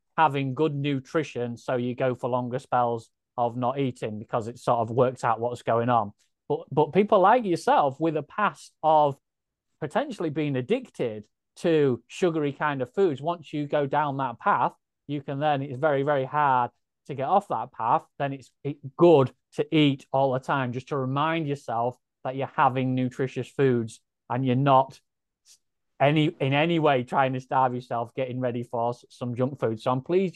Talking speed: 185 wpm